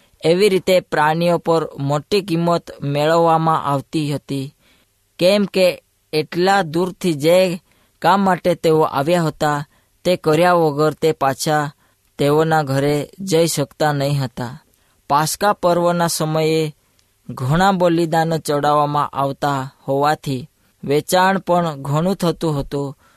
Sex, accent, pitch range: female, native, 140-170 Hz